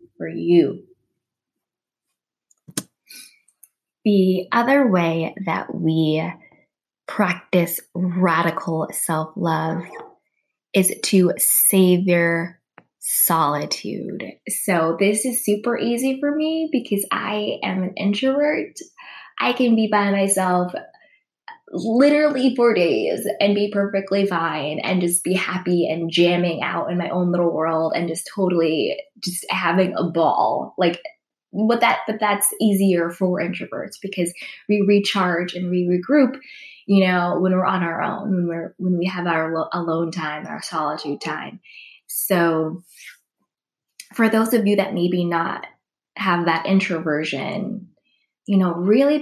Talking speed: 125 wpm